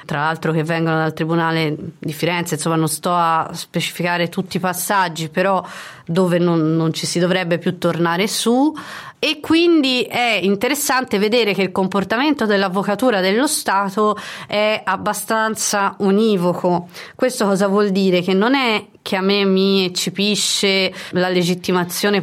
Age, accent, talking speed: 30-49, native, 145 wpm